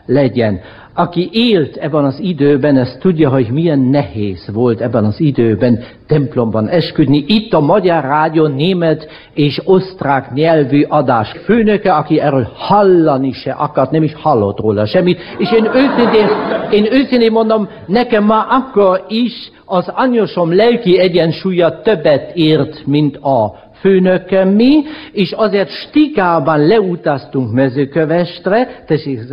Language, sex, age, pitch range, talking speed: Hungarian, male, 60-79, 150-205 Hz, 125 wpm